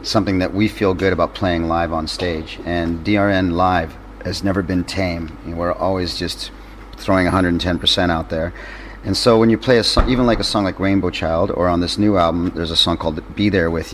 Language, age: English, 30-49